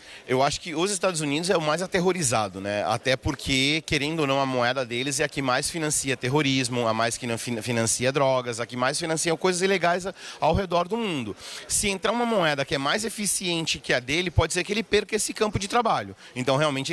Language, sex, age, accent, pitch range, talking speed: Portuguese, male, 30-49, Brazilian, 135-195 Hz, 220 wpm